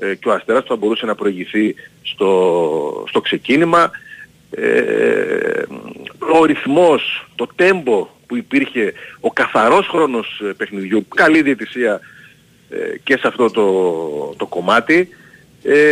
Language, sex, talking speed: Greek, male, 105 wpm